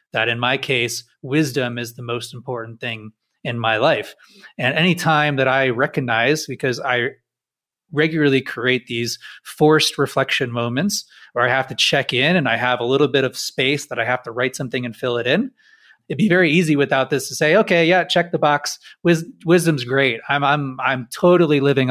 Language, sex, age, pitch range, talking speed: English, male, 30-49, 130-165 Hz, 195 wpm